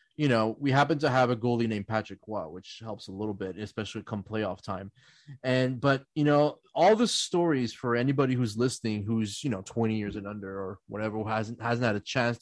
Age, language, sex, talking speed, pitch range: 30-49, English, male, 220 wpm, 105-135 Hz